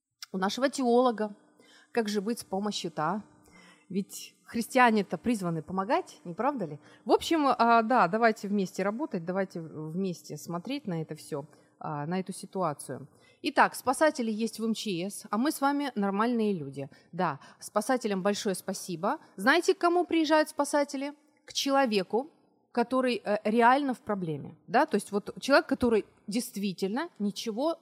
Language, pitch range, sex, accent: Ukrainian, 185-255 Hz, female, native